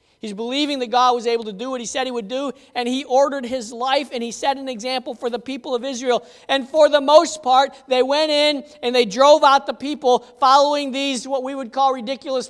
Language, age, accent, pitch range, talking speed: English, 40-59, American, 245-295 Hz, 240 wpm